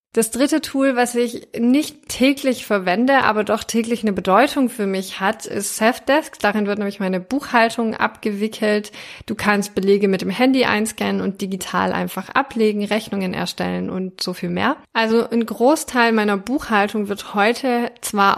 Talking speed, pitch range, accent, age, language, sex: 160 wpm, 185-230 Hz, German, 20-39, German, female